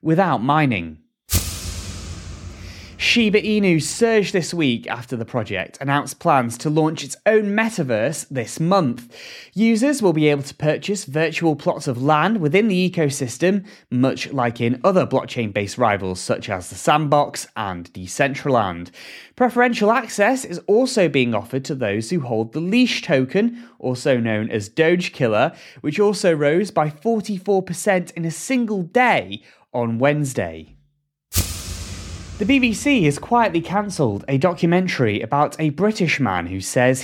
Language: English